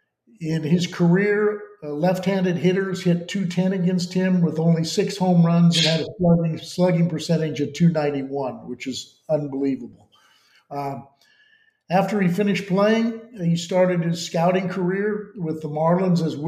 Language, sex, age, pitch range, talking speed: English, male, 50-69, 155-180 Hz, 155 wpm